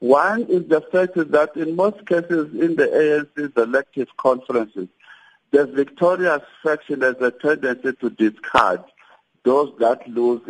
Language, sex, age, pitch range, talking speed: English, male, 60-79, 115-160 Hz, 135 wpm